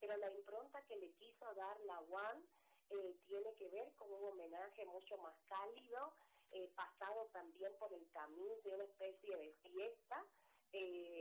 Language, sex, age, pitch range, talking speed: Spanish, female, 40-59, 180-235 Hz, 160 wpm